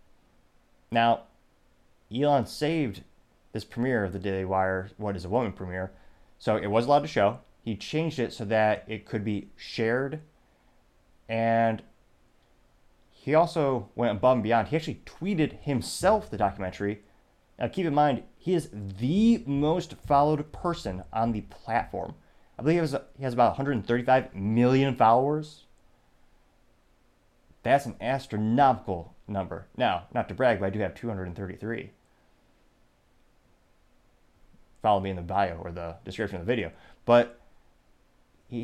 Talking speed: 140 wpm